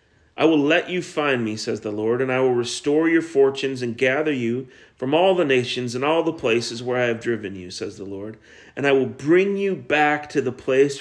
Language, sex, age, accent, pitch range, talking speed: English, male, 40-59, American, 115-155 Hz, 235 wpm